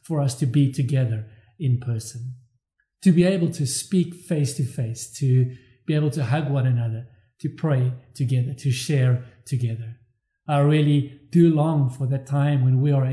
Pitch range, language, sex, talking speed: 125-155 Hz, English, male, 175 wpm